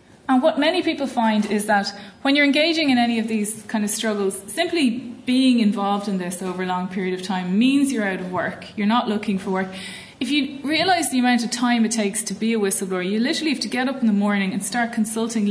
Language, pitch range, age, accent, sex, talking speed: English, 195-235 Hz, 30-49, Irish, female, 245 wpm